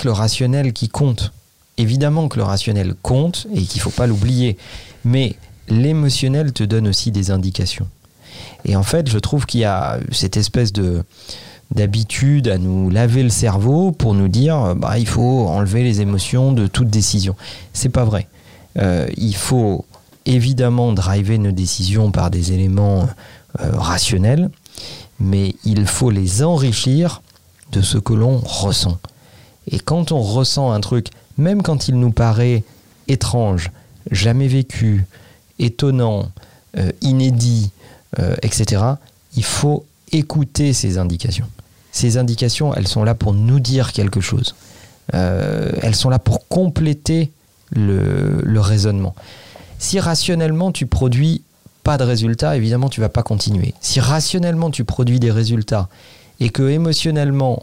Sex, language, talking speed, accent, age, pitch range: male, French, 145 wpm, French, 40-59, 100-130 Hz